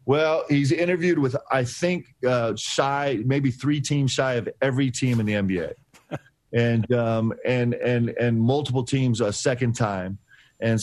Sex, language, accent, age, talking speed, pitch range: male, English, American, 40-59, 160 wpm, 110-130 Hz